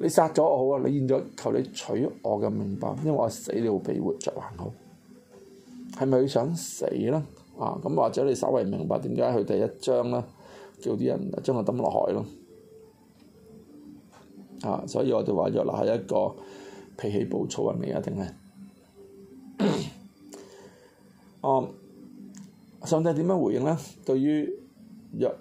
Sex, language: male, Chinese